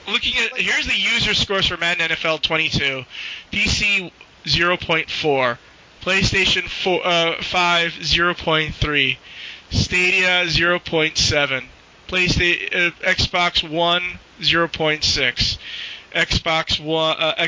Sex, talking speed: male, 80 wpm